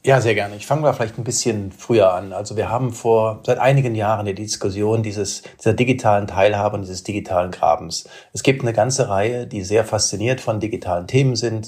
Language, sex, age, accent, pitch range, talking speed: German, male, 40-59, German, 100-125 Hz, 205 wpm